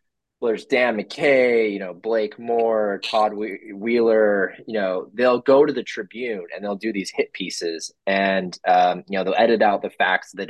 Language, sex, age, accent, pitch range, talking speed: English, male, 20-39, American, 95-120 Hz, 190 wpm